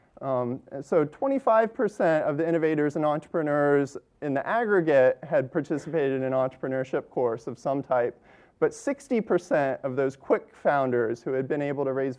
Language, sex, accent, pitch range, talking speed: English, male, American, 130-175 Hz, 160 wpm